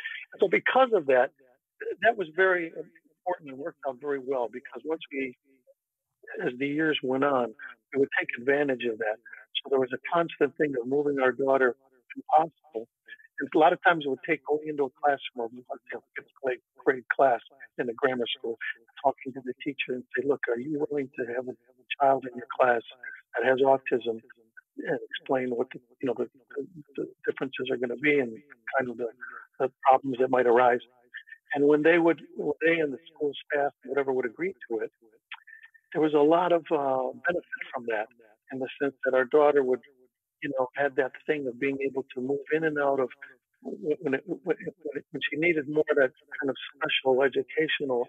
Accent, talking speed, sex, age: American, 200 wpm, male, 60-79